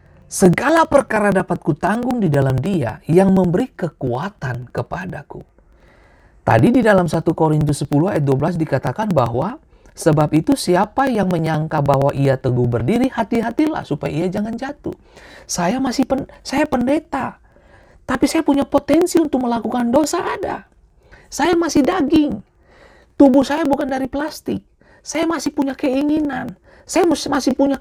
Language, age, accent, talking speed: Indonesian, 40-59, native, 135 wpm